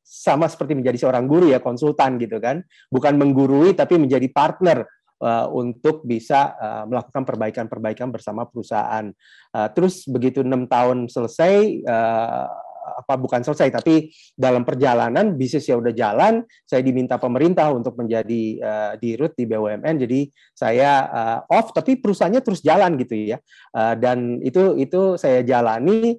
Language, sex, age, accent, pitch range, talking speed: Indonesian, male, 30-49, native, 115-150 Hz, 145 wpm